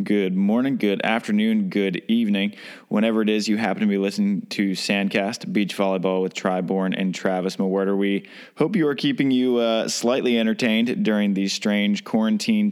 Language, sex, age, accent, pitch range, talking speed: English, male, 20-39, American, 100-135 Hz, 170 wpm